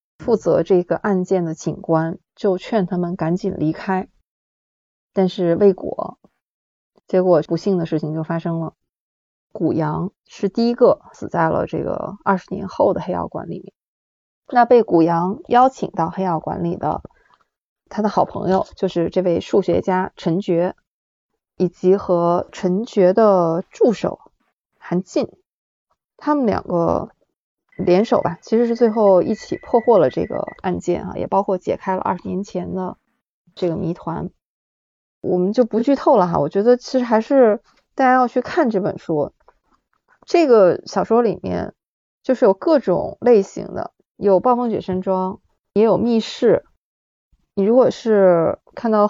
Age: 20-39